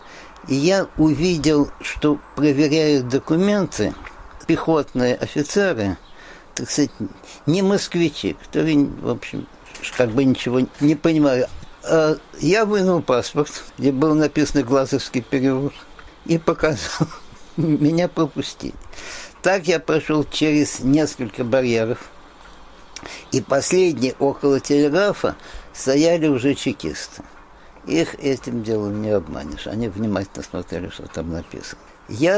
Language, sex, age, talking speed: Russian, male, 60-79, 105 wpm